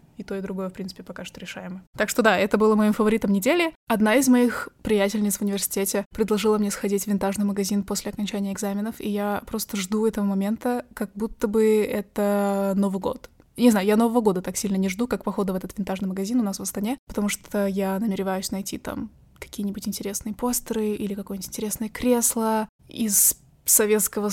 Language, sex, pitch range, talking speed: Russian, female, 200-225 Hz, 190 wpm